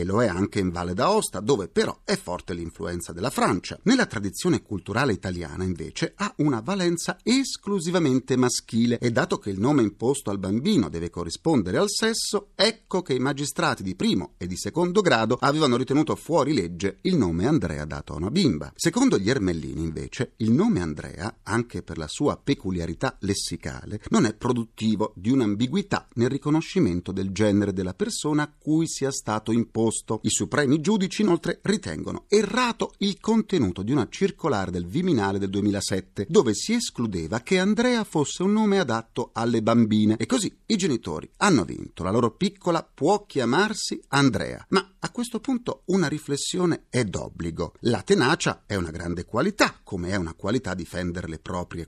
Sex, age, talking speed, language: male, 40-59, 170 wpm, Italian